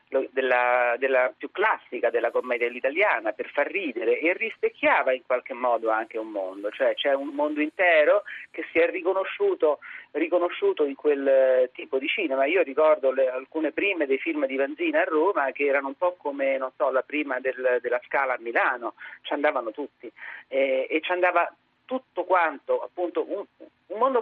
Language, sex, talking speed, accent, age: Italian, male, 175 wpm, native, 40-59